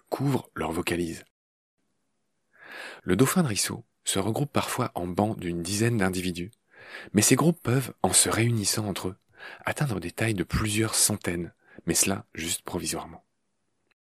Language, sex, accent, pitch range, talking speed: French, male, French, 95-130 Hz, 145 wpm